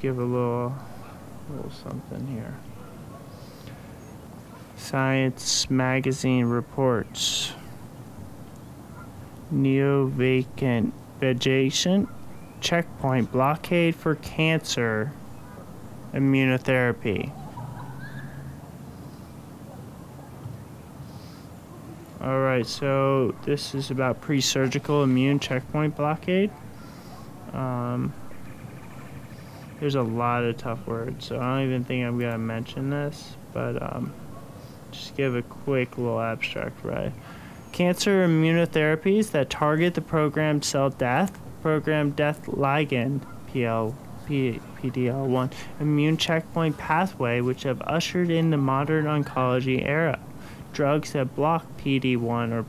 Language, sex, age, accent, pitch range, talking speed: English, male, 30-49, American, 125-150 Hz, 95 wpm